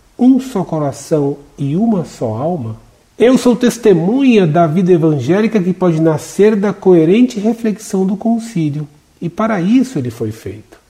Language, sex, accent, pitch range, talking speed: Portuguese, male, Brazilian, 150-220 Hz, 150 wpm